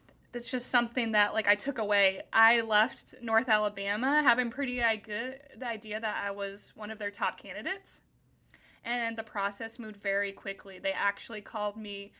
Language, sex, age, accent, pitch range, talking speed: English, female, 20-39, American, 205-240 Hz, 165 wpm